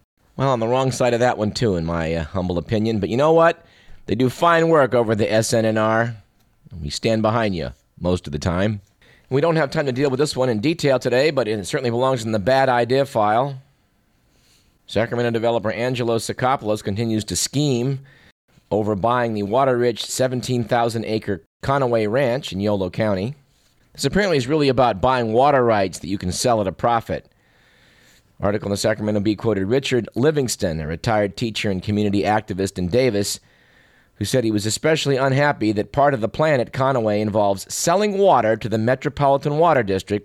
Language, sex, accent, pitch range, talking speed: English, male, American, 105-135 Hz, 185 wpm